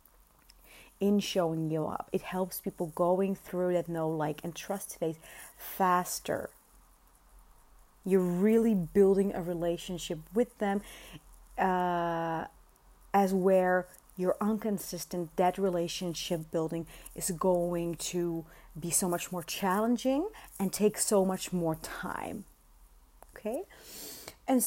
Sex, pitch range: female, 175-220 Hz